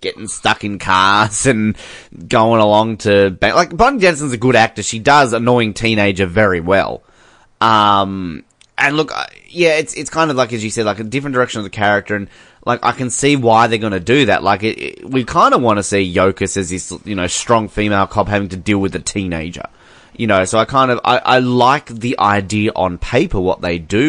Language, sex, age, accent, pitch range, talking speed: English, male, 20-39, Australian, 95-120 Hz, 225 wpm